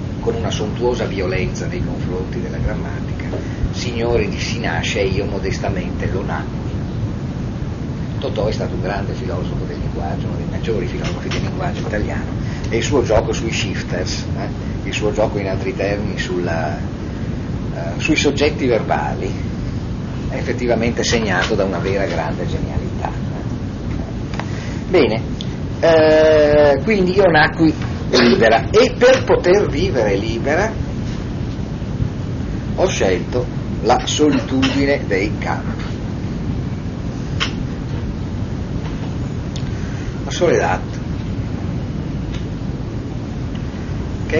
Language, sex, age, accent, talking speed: Italian, male, 40-59, native, 105 wpm